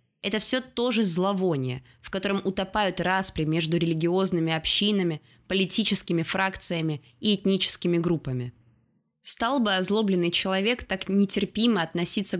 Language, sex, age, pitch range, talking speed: Russian, female, 20-39, 160-200 Hz, 115 wpm